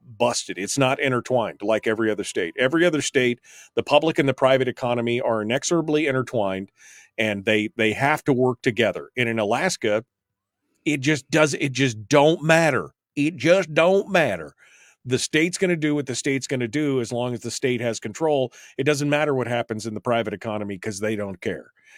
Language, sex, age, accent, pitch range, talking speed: English, male, 40-59, American, 115-145 Hz, 195 wpm